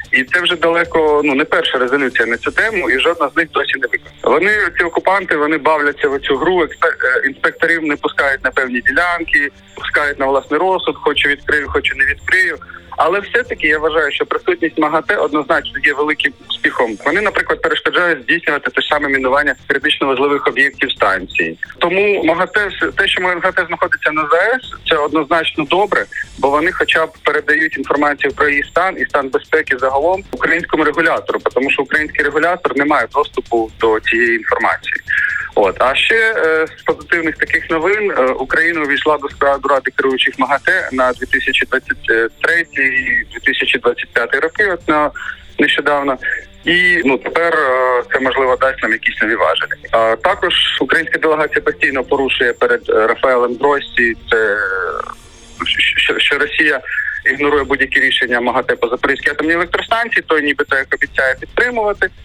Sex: male